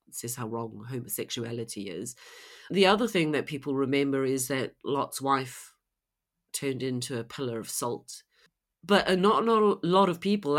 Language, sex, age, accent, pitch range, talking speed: English, female, 40-59, British, 130-155 Hz, 155 wpm